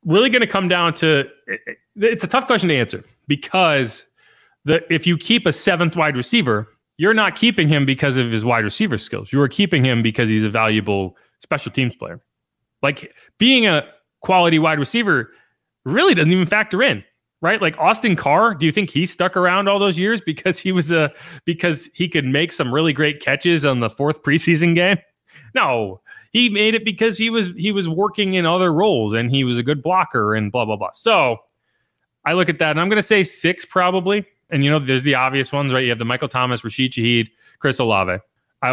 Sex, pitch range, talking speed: male, 125-180 Hz, 210 wpm